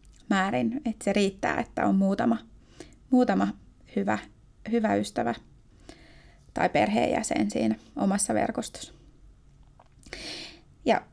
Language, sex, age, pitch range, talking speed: Finnish, female, 30-49, 195-235 Hz, 90 wpm